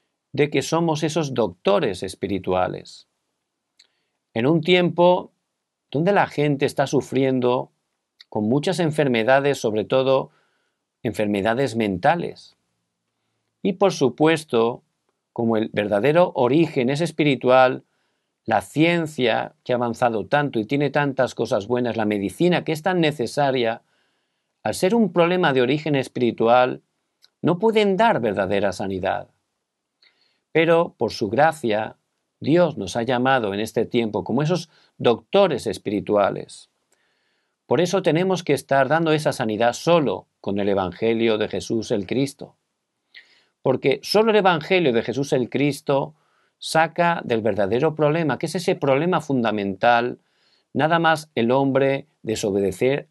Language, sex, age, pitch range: Korean, male, 50-69, 115-160 Hz